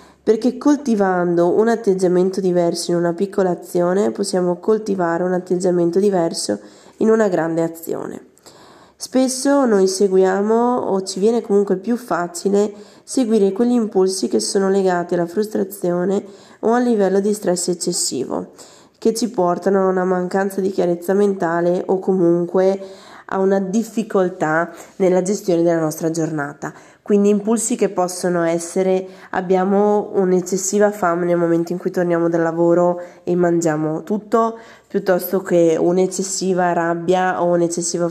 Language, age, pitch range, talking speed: Italian, 20-39, 175-210 Hz, 130 wpm